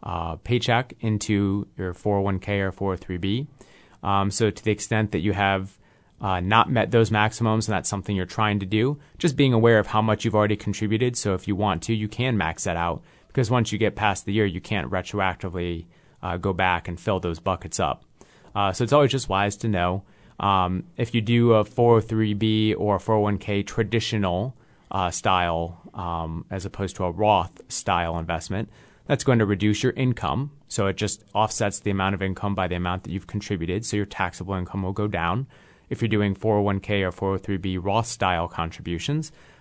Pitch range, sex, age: 95-110 Hz, male, 30-49